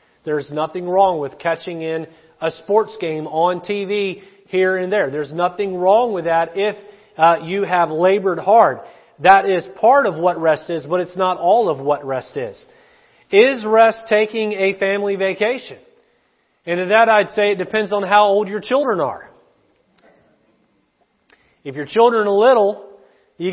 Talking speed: 165 wpm